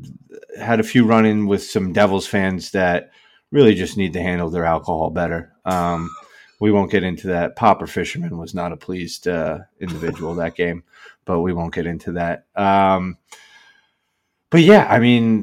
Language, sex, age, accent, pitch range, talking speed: English, male, 30-49, American, 85-100 Hz, 170 wpm